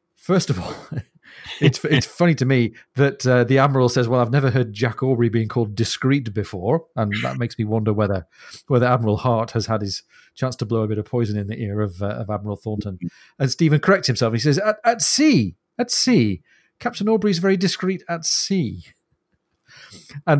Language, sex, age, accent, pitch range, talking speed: English, male, 40-59, British, 110-145 Hz, 200 wpm